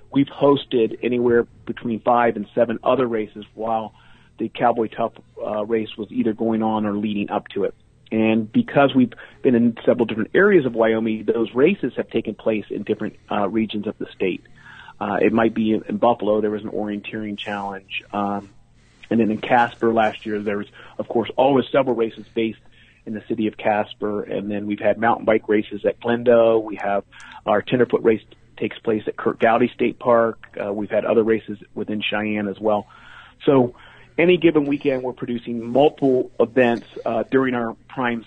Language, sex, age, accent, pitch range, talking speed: English, male, 40-59, American, 105-120 Hz, 190 wpm